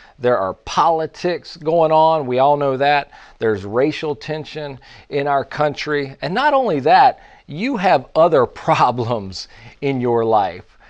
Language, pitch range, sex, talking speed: English, 120-160 Hz, male, 145 wpm